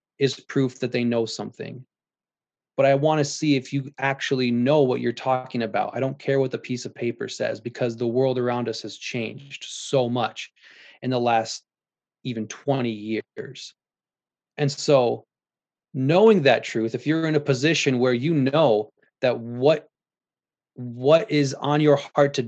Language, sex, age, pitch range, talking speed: English, male, 20-39, 120-145 Hz, 170 wpm